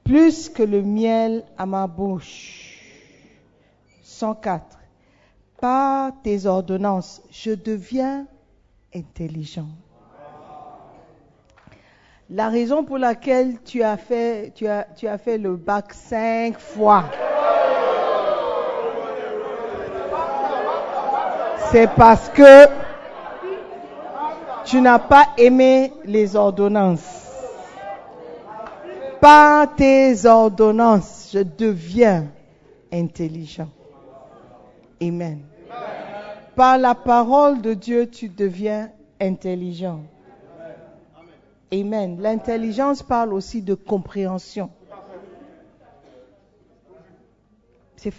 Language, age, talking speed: French, 50-69, 75 wpm